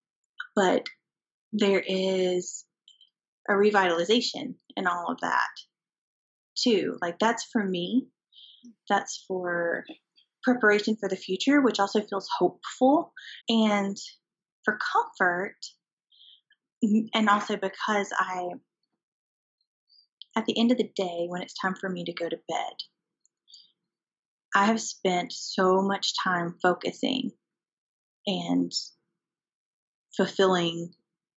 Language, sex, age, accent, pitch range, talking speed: English, female, 30-49, American, 175-225 Hz, 105 wpm